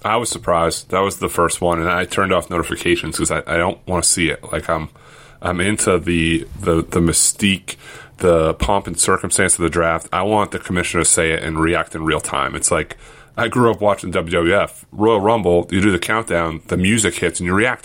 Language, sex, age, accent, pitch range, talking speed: English, male, 30-49, American, 85-105 Hz, 225 wpm